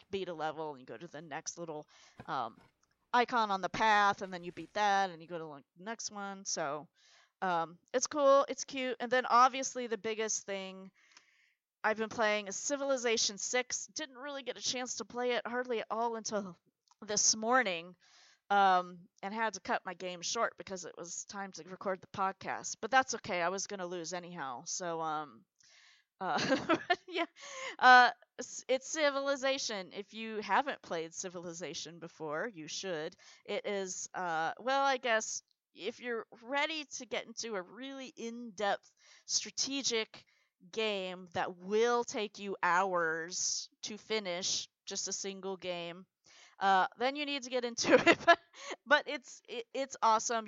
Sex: female